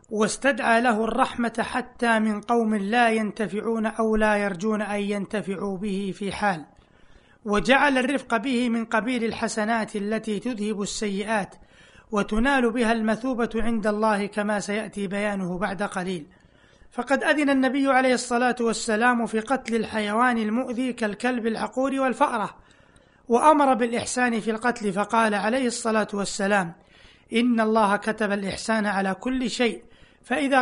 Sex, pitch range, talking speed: male, 210-245 Hz, 125 wpm